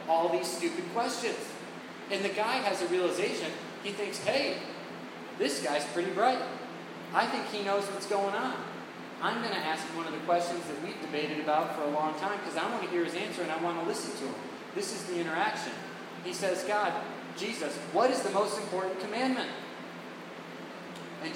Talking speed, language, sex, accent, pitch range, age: 195 wpm, English, male, American, 140-190 Hz, 30-49